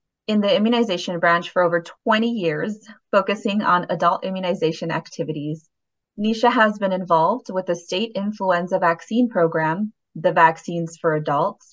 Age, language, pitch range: 20-39, English, 170-225 Hz